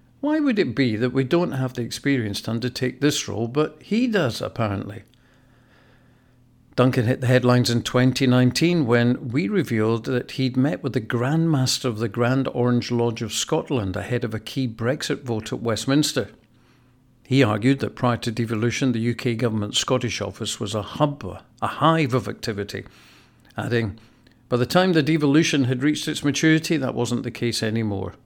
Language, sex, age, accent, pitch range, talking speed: English, male, 50-69, British, 110-135 Hz, 175 wpm